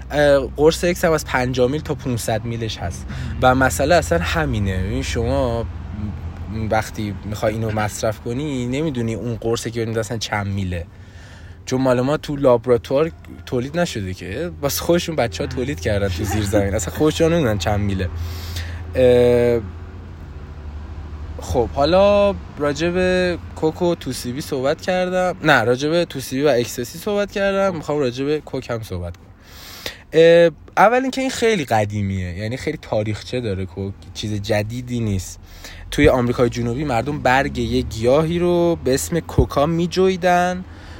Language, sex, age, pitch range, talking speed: Persian, male, 20-39, 95-140 Hz, 140 wpm